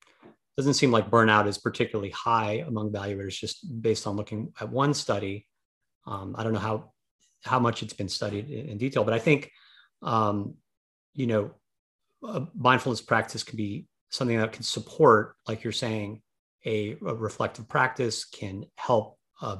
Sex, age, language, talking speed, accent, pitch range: male, 30-49, English, 165 wpm, American, 100-115 Hz